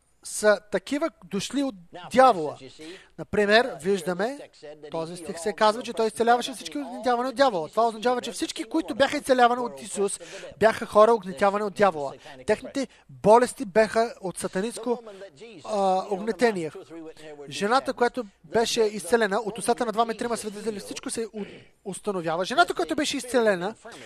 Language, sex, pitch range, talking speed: English, male, 185-255 Hz, 135 wpm